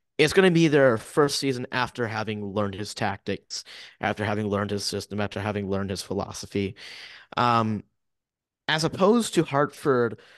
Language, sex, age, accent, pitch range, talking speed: English, male, 30-49, American, 105-145 Hz, 150 wpm